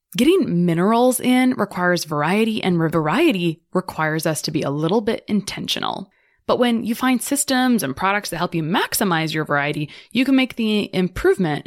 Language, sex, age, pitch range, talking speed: English, female, 20-39, 165-215 Hz, 170 wpm